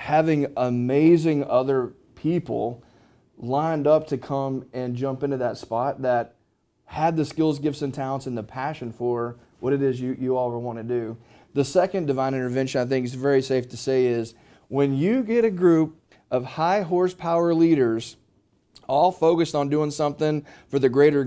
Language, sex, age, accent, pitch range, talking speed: English, male, 30-49, American, 125-155 Hz, 175 wpm